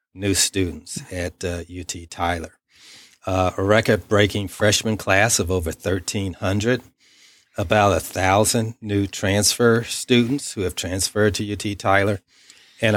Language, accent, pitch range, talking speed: English, American, 90-110 Hz, 120 wpm